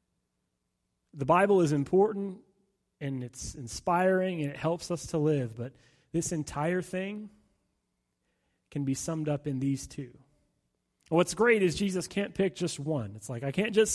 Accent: American